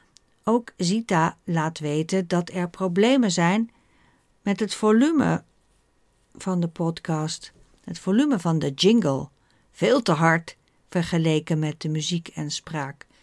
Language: Dutch